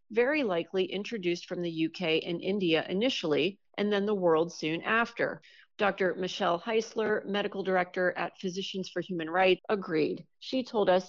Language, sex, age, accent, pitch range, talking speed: English, female, 40-59, American, 175-220 Hz, 155 wpm